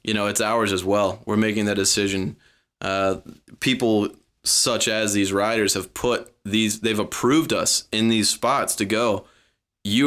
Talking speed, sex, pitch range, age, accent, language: 165 wpm, male, 95-110 Hz, 20-39, American, English